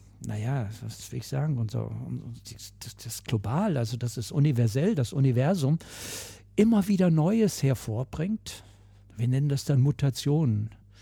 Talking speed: 125 wpm